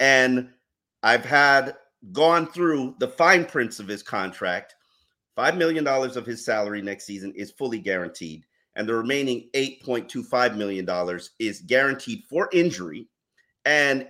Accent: American